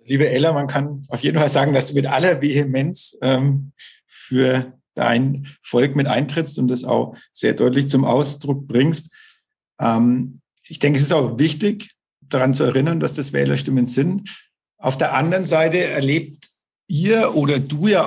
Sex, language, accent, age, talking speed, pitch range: male, German, German, 50-69, 165 wpm, 130-155 Hz